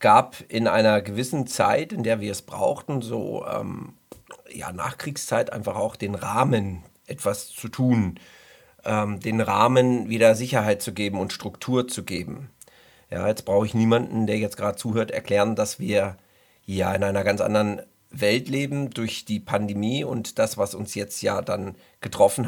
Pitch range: 105-125 Hz